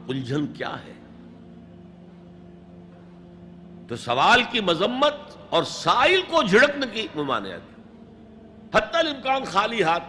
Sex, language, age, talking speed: male, Urdu, 60-79, 90 wpm